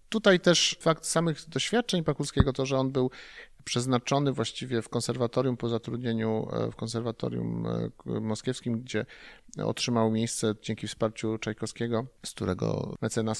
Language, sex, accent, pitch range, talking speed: Polish, male, native, 115-165 Hz, 125 wpm